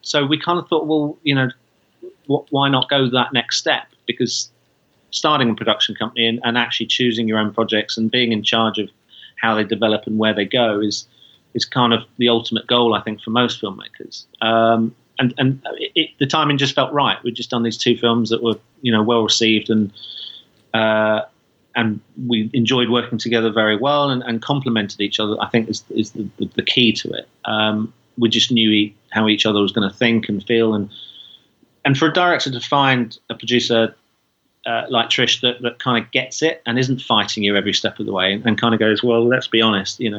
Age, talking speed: 30-49, 220 wpm